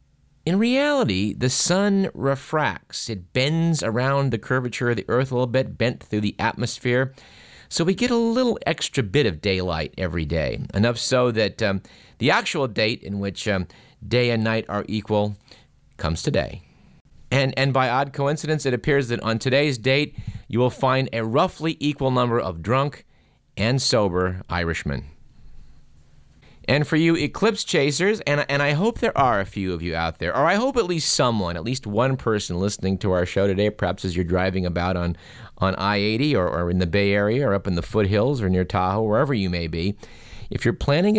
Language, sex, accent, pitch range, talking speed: English, male, American, 100-140 Hz, 190 wpm